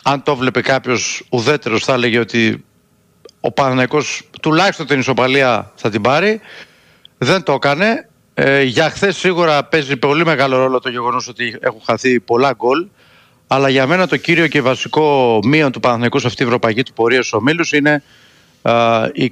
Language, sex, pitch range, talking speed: Greek, male, 125-160 Hz, 160 wpm